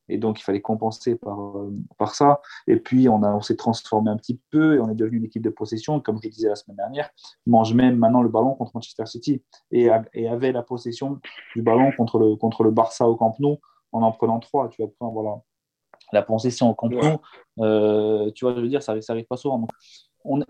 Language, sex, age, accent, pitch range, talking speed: French, male, 30-49, French, 110-130 Hz, 245 wpm